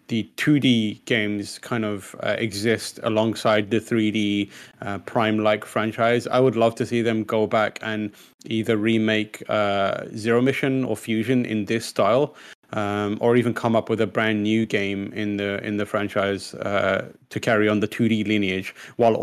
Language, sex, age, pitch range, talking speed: English, male, 20-39, 105-115 Hz, 170 wpm